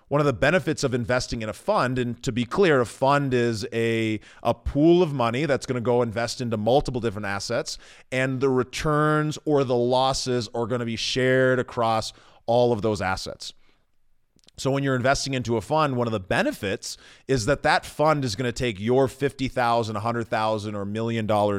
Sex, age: male, 30-49